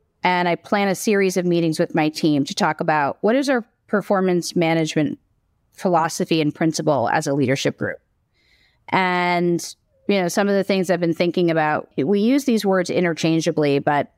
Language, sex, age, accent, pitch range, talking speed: English, female, 30-49, American, 165-210 Hz, 180 wpm